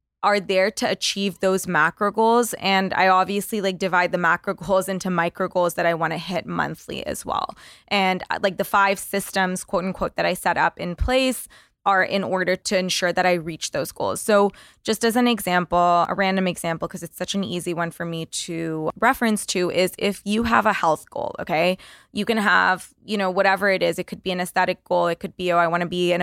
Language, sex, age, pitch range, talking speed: English, female, 20-39, 180-200 Hz, 225 wpm